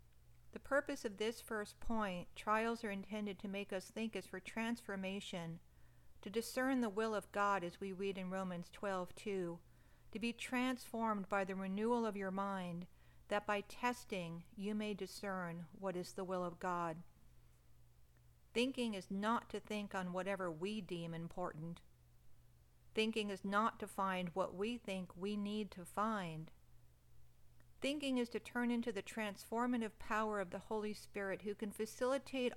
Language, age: English, 50-69